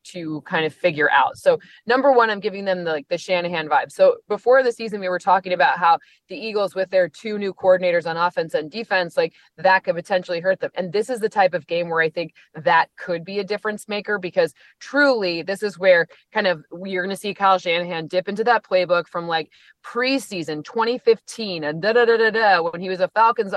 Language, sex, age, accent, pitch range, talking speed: English, female, 20-39, American, 175-230 Hz, 215 wpm